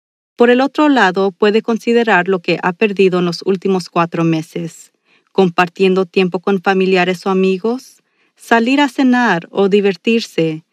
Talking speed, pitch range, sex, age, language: 145 wpm, 180-230 Hz, female, 40-59, Spanish